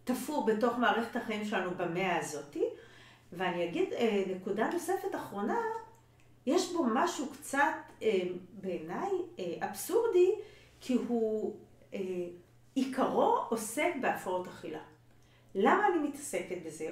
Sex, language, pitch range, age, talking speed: female, Hebrew, 190-280 Hz, 40-59, 100 wpm